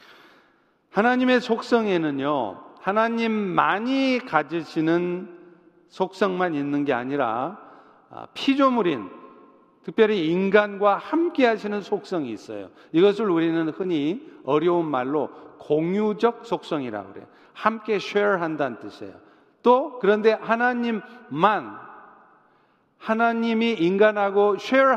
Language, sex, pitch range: Korean, male, 165-225 Hz